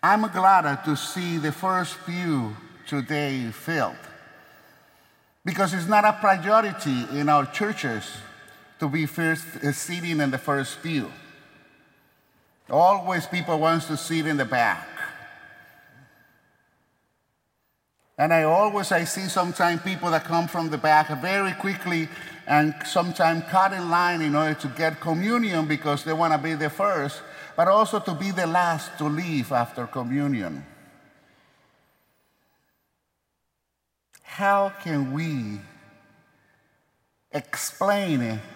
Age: 50-69